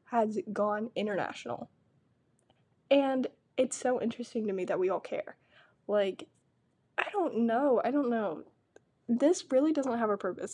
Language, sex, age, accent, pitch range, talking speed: English, female, 10-29, American, 200-245 Hz, 150 wpm